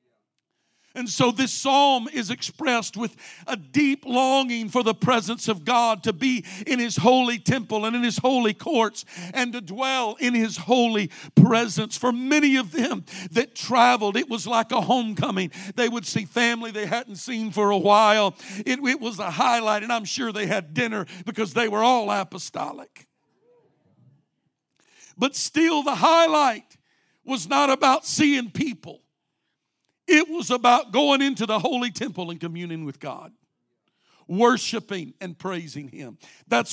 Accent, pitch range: American, 205-250 Hz